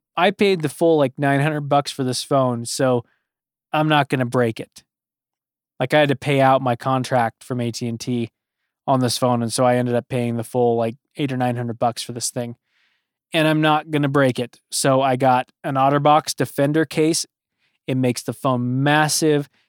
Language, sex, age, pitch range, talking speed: English, male, 20-39, 125-155 Hz, 200 wpm